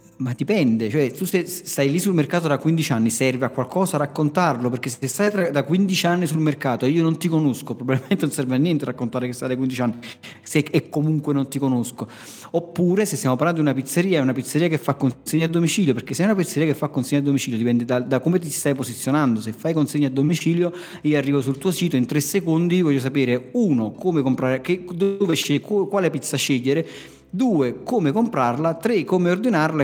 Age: 40-59